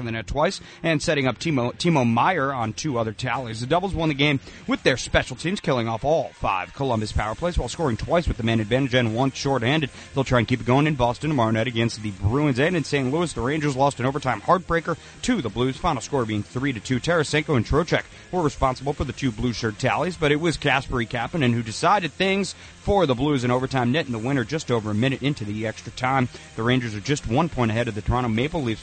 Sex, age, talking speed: male, 30-49, 250 wpm